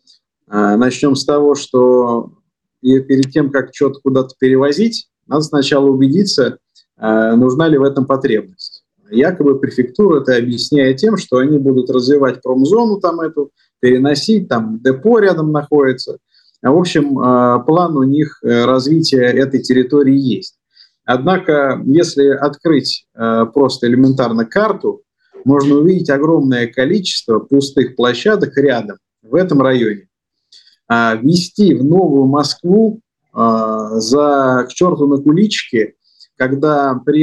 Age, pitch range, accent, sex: 20-39, 125-150 Hz, native, male